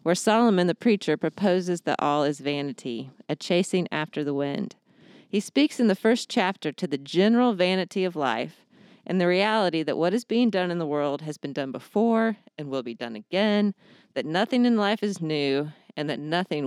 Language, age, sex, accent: English, 40-59, female, American